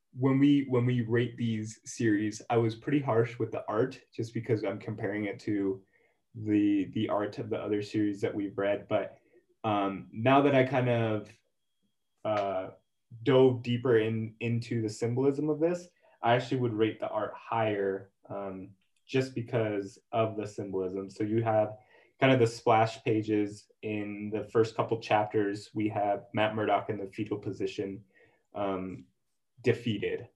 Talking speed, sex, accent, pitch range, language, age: 160 wpm, male, American, 105-120 Hz, English, 20-39